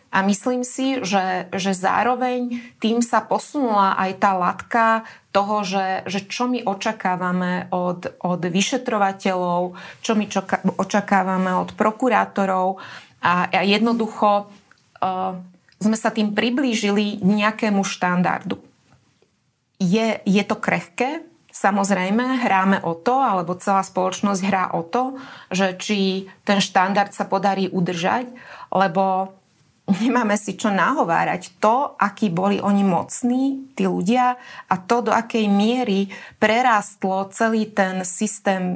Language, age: Slovak, 30-49